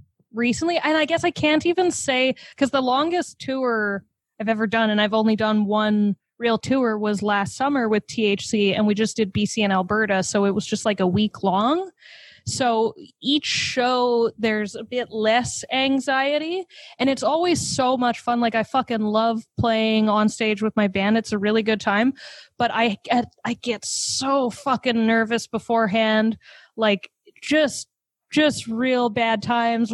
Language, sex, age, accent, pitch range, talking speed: English, female, 20-39, American, 220-260 Hz, 170 wpm